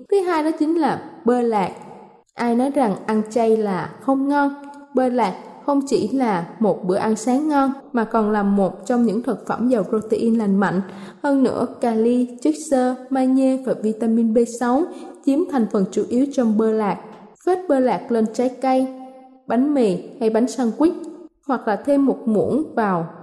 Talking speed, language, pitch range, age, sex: 185 wpm, Vietnamese, 220-285 Hz, 20-39, female